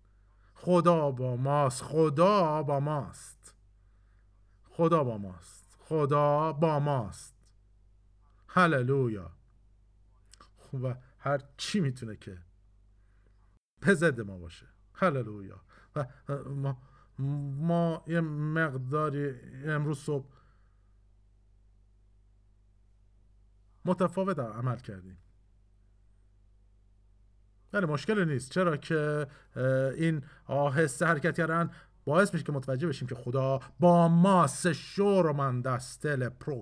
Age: 50-69